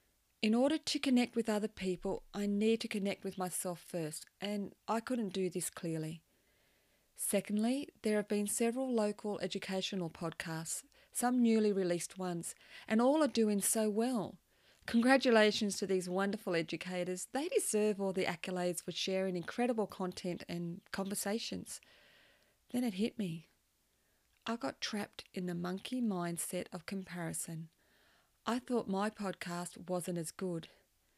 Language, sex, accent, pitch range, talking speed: English, female, Australian, 180-225 Hz, 140 wpm